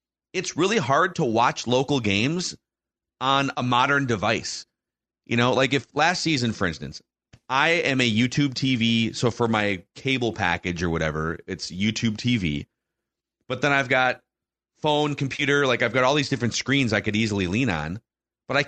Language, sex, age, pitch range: English, male, 30-49, 110-140 Hz